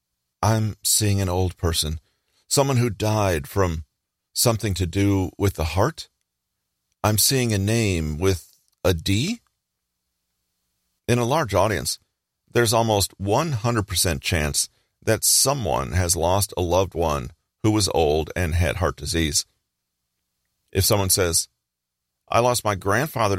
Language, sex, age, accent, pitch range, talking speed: English, male, 40-59, American, 85-110 Hz, 130 wpm